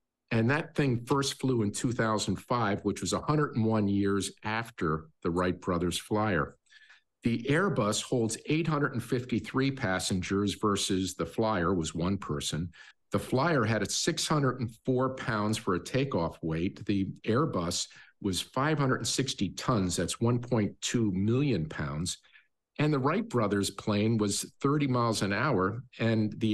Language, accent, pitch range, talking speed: English, American, 95-125 Hz, 130 wpm